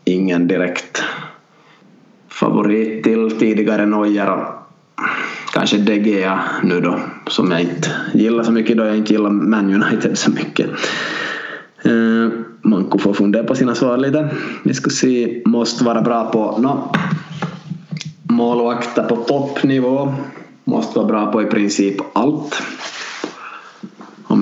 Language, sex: Swedish, male